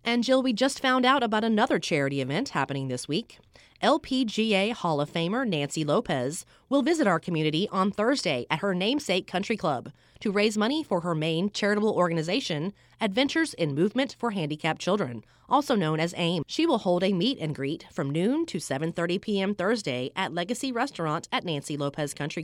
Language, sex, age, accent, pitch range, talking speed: English, female, 30-49, American, 150-230 Hz, 180 wpm